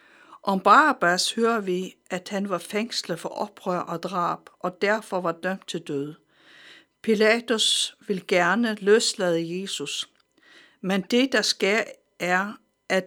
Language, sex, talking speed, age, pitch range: Danish, female, 135 wpm, 60-79, 180-230 Hz